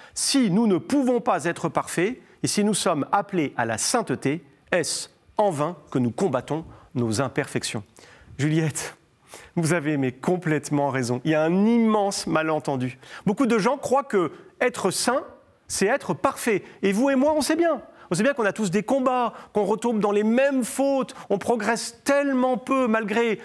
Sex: male